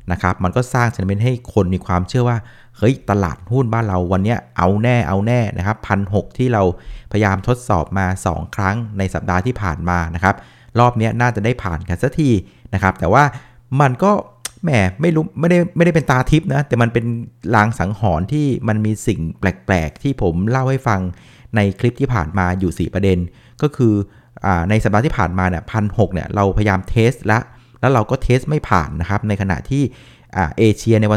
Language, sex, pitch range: Thai, male, 95-125 Hz